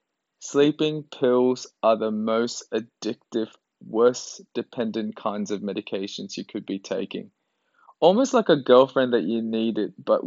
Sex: male